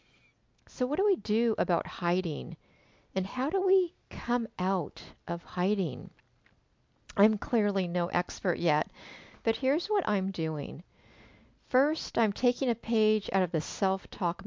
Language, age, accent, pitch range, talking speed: English, 50-69, American, 170-230 Hz, 140 wpm